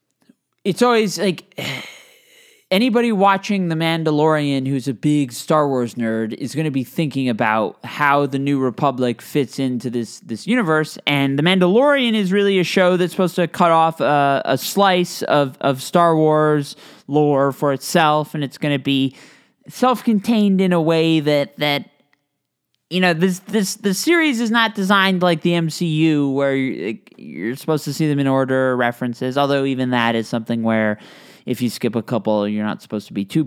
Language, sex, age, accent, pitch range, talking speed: English, male, 20-39, American, 120-175 Hz, 180 wpm